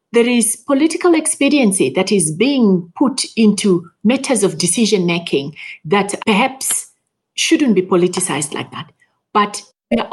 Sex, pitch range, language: female, 190-250 Hz, English